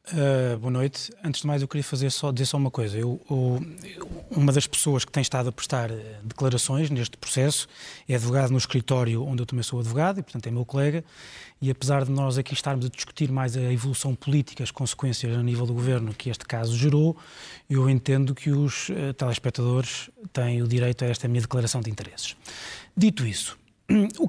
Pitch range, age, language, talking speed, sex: 125-175 Hz, 20-39, Portuguese, 185 wpm, male